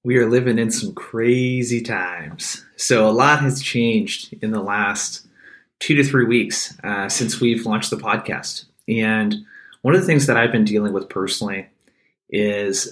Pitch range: 105-120 Hz